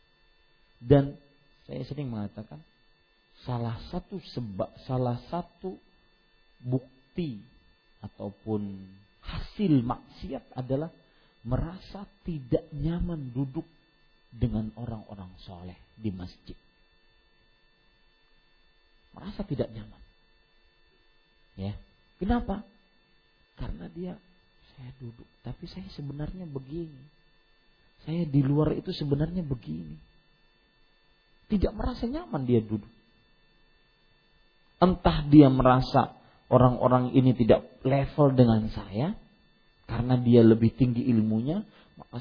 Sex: male